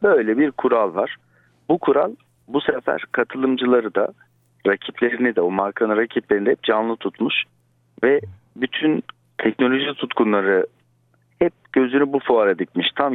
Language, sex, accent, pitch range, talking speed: Turkish, male, native, 90-120 Hz, 130 wpm